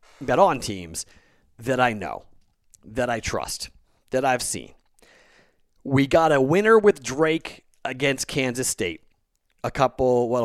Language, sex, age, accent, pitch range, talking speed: English, male, 40-59, American, 110-160 Hz, 140 wpm